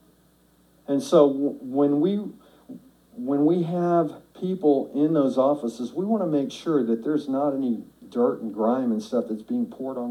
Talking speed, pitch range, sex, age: 170 wpm, 115-150 Hz, male, 50-69